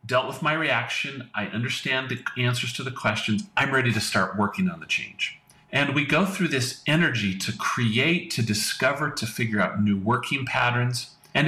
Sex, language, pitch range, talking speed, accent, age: male, English, 110-165 Hz, 190 wpm, American, 40-59